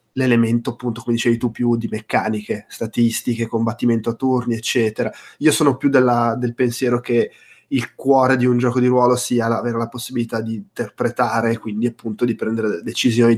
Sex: male